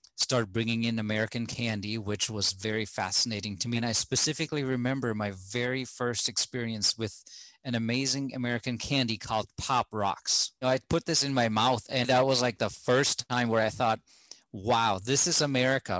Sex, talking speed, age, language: male, 175 wpm, 30-49, English